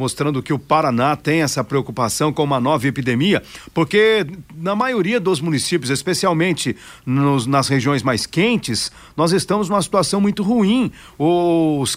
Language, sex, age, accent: Portuguese, male, 50-69, Brazilian